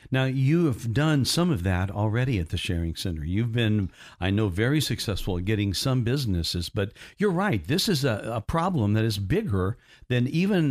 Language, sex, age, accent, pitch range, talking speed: English, male, 60-79, American, 110-140 Hz, 195 wpm